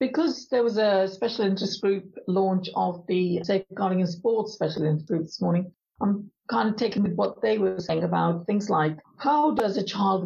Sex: female